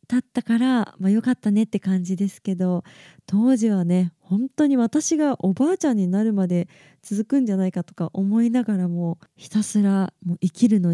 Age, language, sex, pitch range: 20-39, Japanese, female, 180-220 Hz